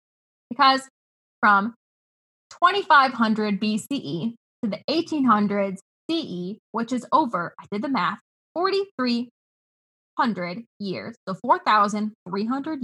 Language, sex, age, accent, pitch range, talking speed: English, female, 10-29, American, 205-275 Hz, 90 wpm